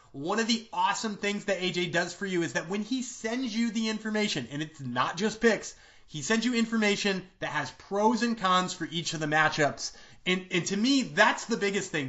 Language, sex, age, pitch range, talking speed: English, male, 30-49, 150-220 Hz, 225 wpm